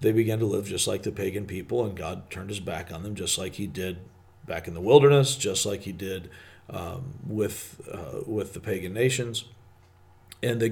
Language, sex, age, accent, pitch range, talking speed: English, male, 40-59, American, 100-125 Hz, 205 wpm